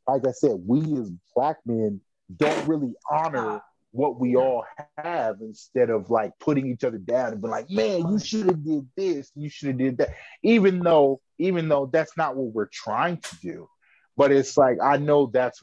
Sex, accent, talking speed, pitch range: male, American, 195 wpm, 120-160 Hz